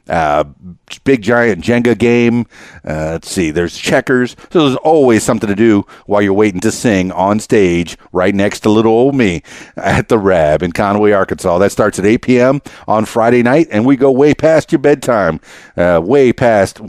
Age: 50-69